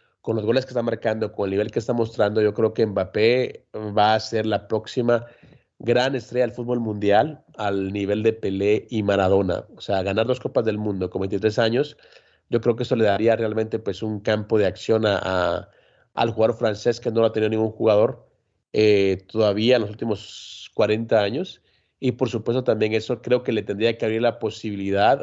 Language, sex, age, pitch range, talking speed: Spanish, male, 30-49, 105-125 Hz, 205 wpm